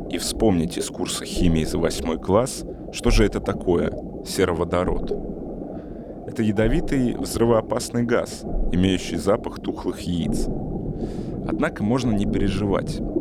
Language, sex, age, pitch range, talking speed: Russian, male, 30-49, 85-110 Hz, 115 wpm